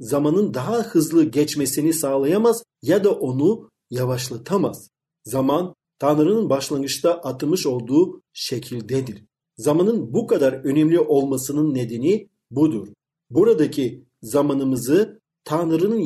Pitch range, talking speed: 140-200 Hz, 95 wpm